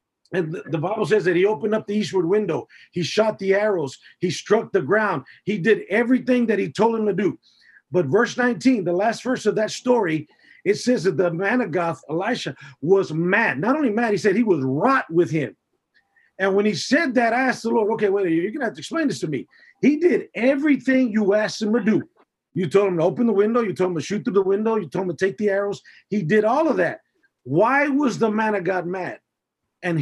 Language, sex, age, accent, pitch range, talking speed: English, male, 40-59, American, 180-235 Hz, 245 wpm